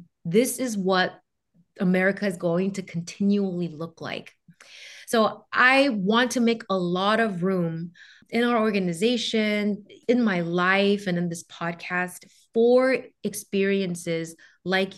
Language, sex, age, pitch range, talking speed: English, female, 20-39, 180-220 Hz, 130 wpm